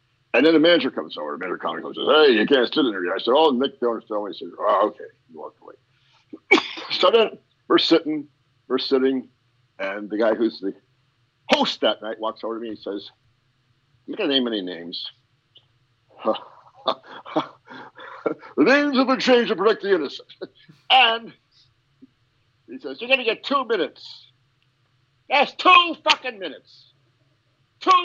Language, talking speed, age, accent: English, 165 wpm, 50-69, American